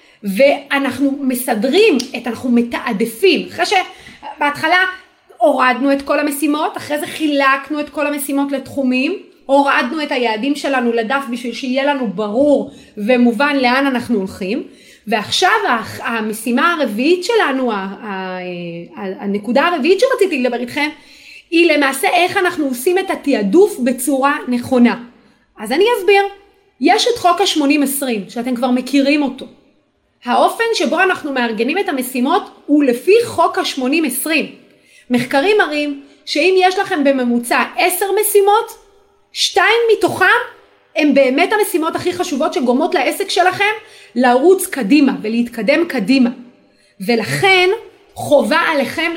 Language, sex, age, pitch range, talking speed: Hebrew, female, 30-49, 255-365 Hz, 115 wpm